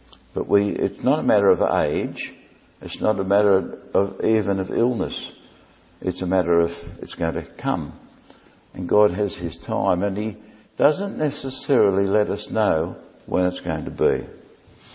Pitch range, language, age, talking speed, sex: 90-120 Hz, English, 60-79, 155 wpm, male